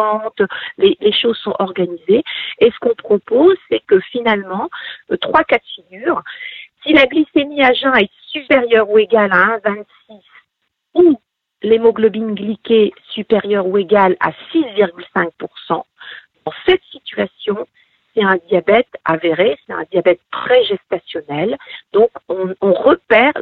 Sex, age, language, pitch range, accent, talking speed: female, 50-69, French, 200-290 Hz, French, 130 wpm